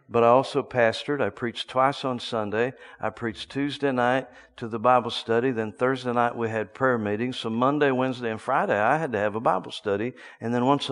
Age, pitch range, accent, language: 50-69, 110-145 Hz, American, English